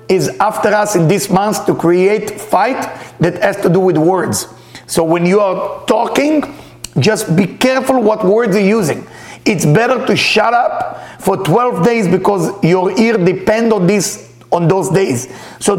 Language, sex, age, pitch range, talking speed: English, male, 50-69, 155-215 Hz, 175 wpm